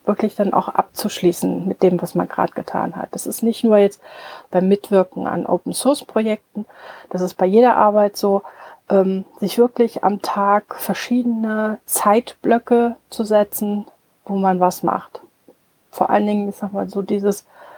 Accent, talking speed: German, 160 wpm